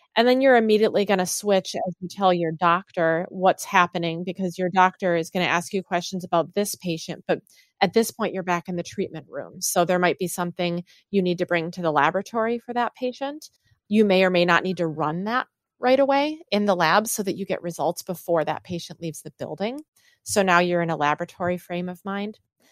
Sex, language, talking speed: female, English, 225 wpm